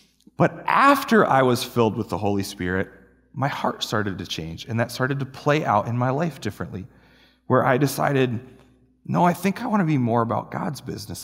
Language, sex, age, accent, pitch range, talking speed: English, male, 30-49, American, 115-170 Hz, 205 wpm